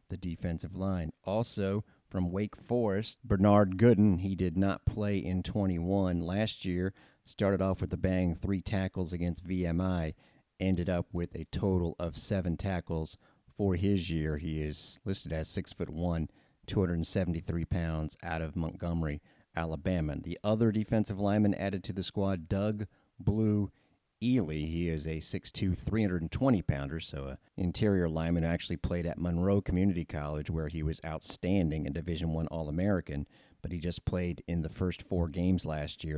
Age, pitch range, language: 40-59, 80-100 Hz, English